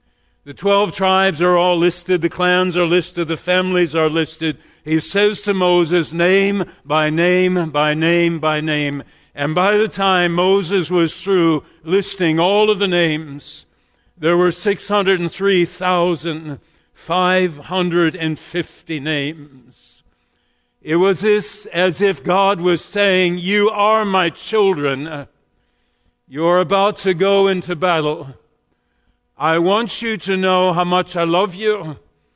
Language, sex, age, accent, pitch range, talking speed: English, male, 50-69, American, 150-185 Hz, 130 wpm